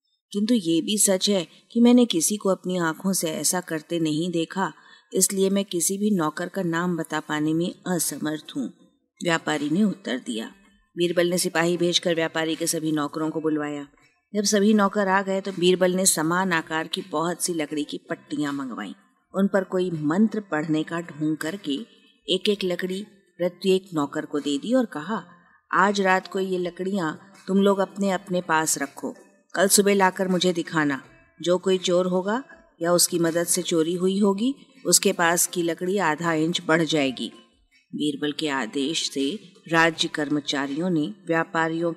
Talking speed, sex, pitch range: 170 wpm, female, 160-195 Hz